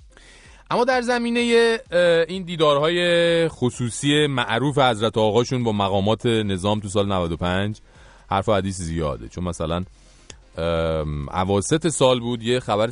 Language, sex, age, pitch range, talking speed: English, male, 30-49, 95-140 Hz, 120 wpm